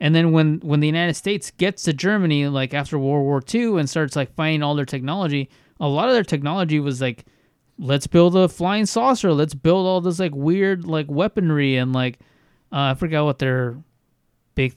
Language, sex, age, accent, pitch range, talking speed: English, male, 20-39, American, 135-165 Hz, 205 wpm